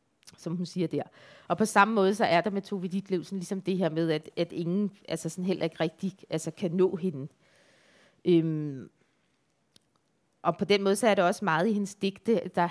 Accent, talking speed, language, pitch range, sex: native, 210 wpm, Danish, 165-195 Hz, female